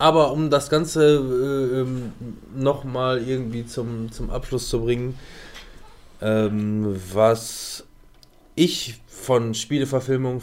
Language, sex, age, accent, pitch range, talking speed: German, male, 20-39, German, 115-145 Hz, 100 wpm